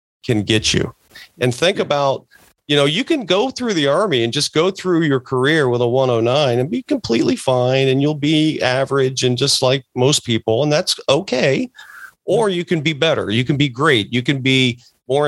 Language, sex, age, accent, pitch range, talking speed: English, male, 40-59, American, 110-140 Hz, 210 wpm